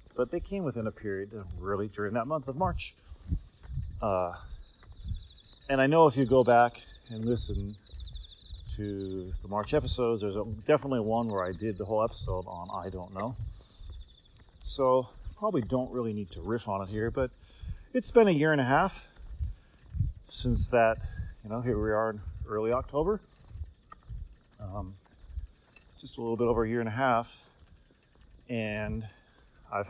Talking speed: 160 wpm